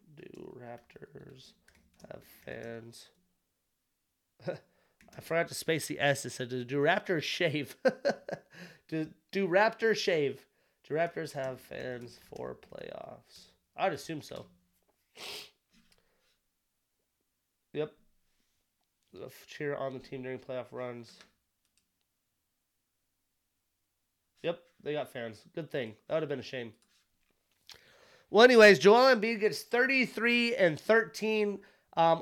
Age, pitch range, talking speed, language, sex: 30-49, 150-200 Hz, 105 wpm, English, male